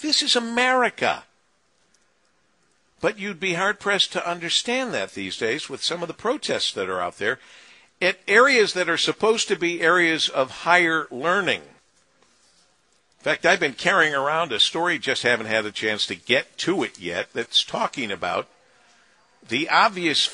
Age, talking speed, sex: 50-69, 160 wpm, male